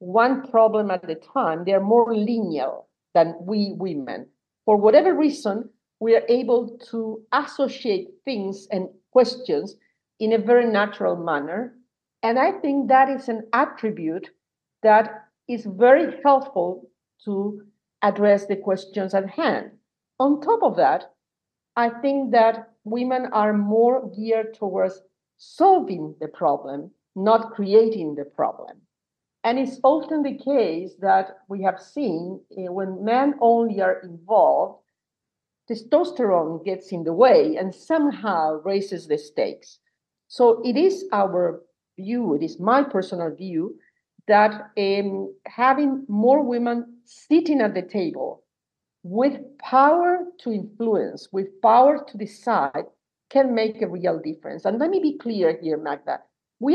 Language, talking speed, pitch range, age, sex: English, 135 wpm, 195-260 Hz, 50-69, female